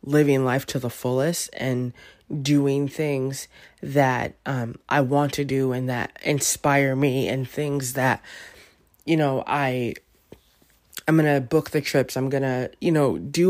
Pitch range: 125-145 Hz